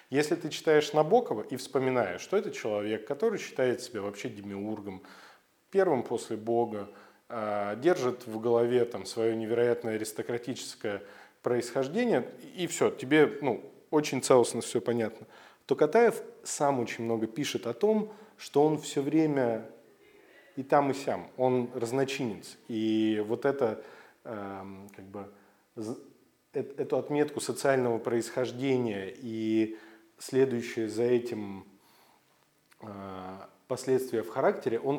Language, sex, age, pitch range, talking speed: Russian, male, 20-39, 110-135 Hz, 115 wpm